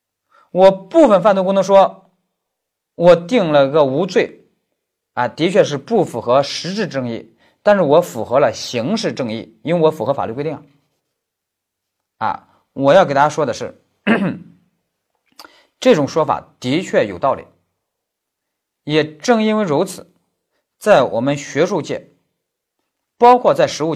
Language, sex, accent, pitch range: Chinese, male, native, 140-190 Hz